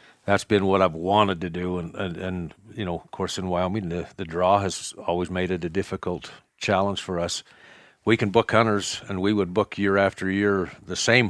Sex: male